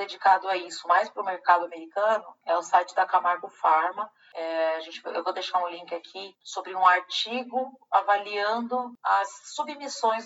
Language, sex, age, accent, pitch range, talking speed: Portuguese, female, 30-49, Brazilian, 170-215 Hz, 170 wpm